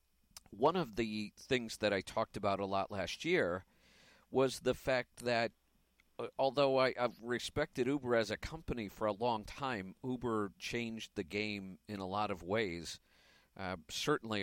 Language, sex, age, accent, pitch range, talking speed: English, male, 50-69, American, 100-125 Hz, 165 wpm